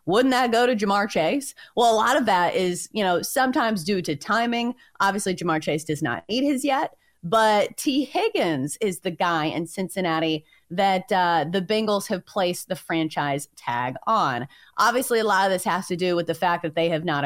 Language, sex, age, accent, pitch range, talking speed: English, female, 30-49, American, 170-245 Hz, 205 wpm